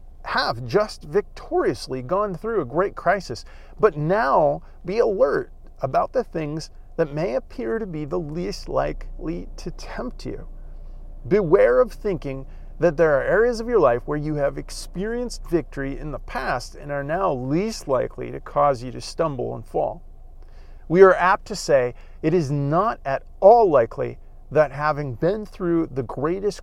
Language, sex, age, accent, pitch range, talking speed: English, male, 40-59, American, 125-175 Hz, 165 wpm